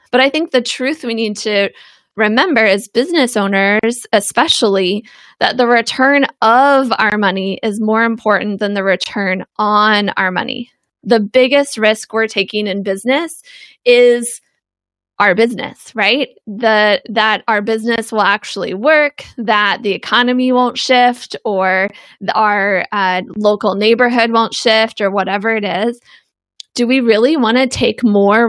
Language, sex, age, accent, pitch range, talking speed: English, female, 20-39, American, 205-245 Hz, 145 wpm